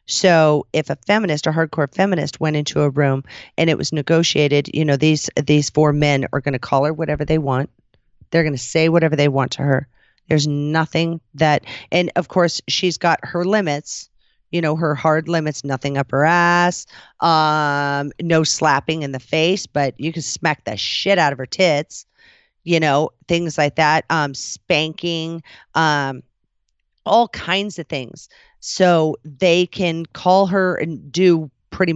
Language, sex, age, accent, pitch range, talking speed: English, female, 40-59, American, 145-170 Hz, 175 wpm